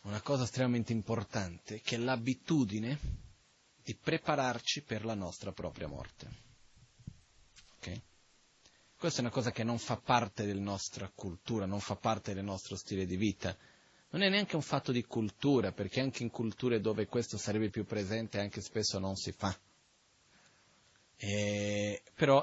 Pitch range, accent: 105-125 Hz, native